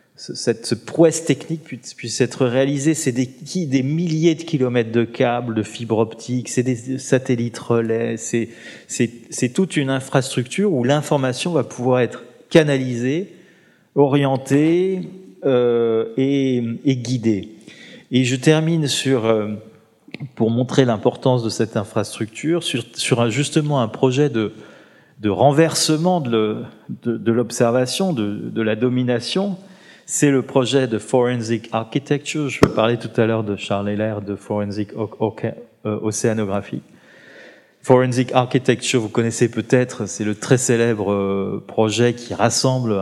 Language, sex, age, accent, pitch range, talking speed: French, male, 30-49, French, 110-135 Hz, 130 wpm